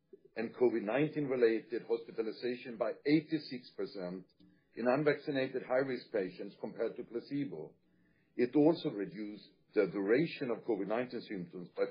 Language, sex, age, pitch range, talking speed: English, male, 50-69, 115-160 Hz, 115 wpm